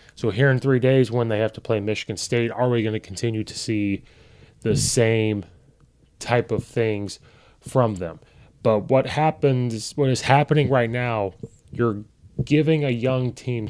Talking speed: 170 wpm